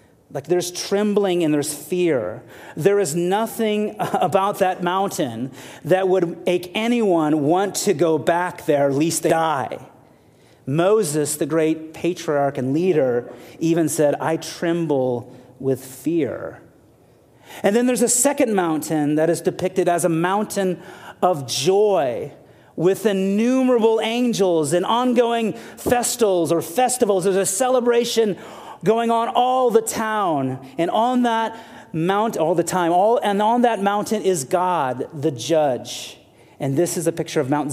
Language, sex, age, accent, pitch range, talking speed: English, male, 30-49, American, 145-195 Hz, 140 wpm